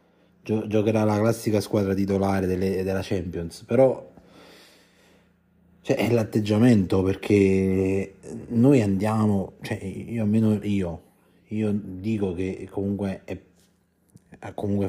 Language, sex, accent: Italian, male, native